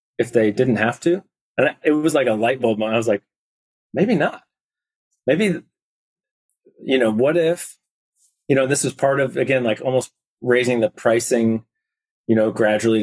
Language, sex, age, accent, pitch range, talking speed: English, male, 30-49, American, 105-130 Hz, 175 wpm